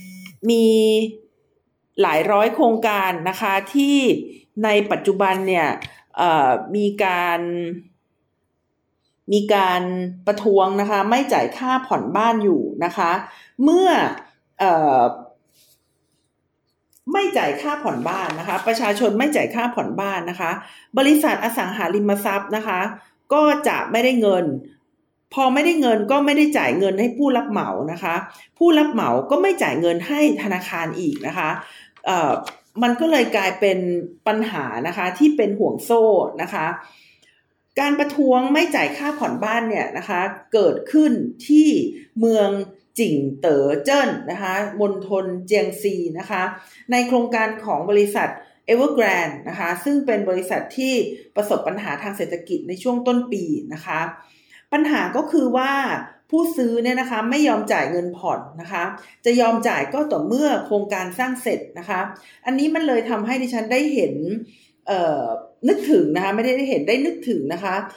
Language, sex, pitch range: Thai, female, 190-265 Hz